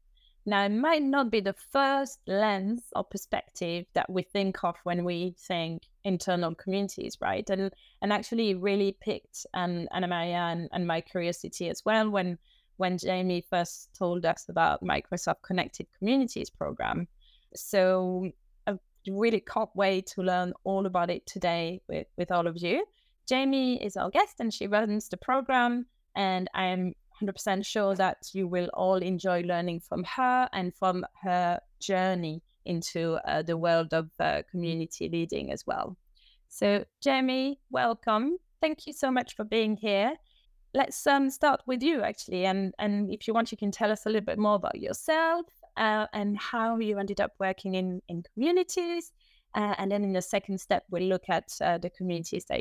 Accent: British